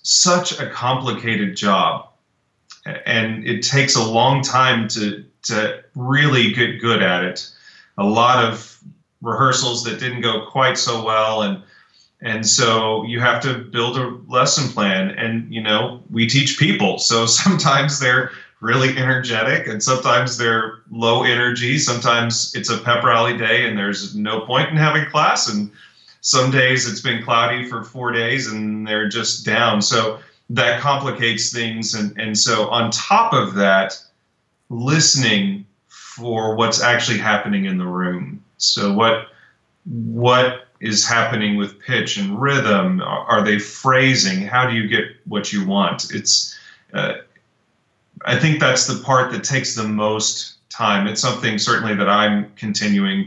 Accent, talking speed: American, 155 wpm